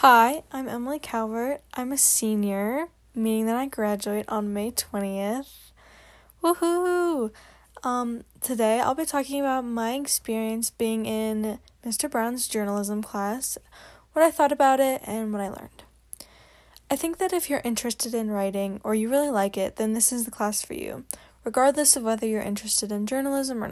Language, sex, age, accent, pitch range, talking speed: English, female, 10-29, American, 215-275 Hz, 165 wpm